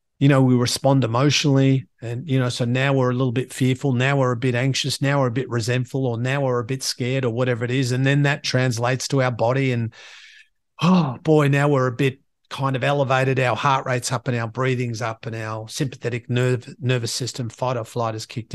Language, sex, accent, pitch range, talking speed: English, male, Australian, 120-140 Hz, 230 wpm